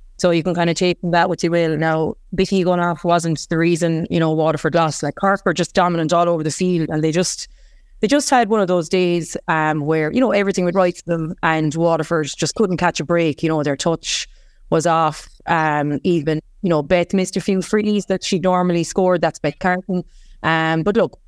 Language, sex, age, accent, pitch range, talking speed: English, female, 20-39, Irish, 160-185 Hz, 230 wpm